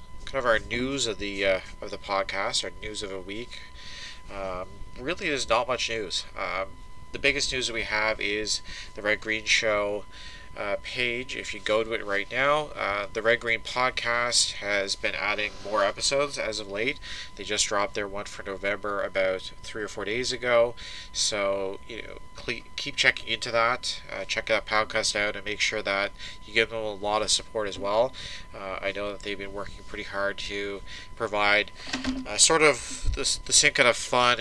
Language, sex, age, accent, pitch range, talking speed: English, male, 30-49, American, 100-115 Hz, 195 wpm